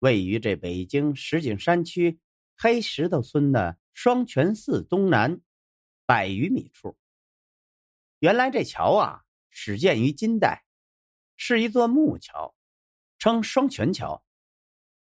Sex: male